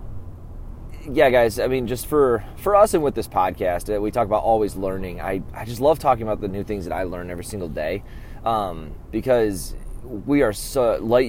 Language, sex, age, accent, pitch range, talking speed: English, male, 20-39, American, 80-110 Hz, 200 wpm